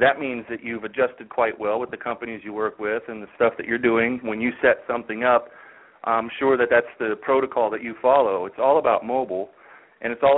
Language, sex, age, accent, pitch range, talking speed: English, male, 40-59, American, 120-145 Hz, 230 wpm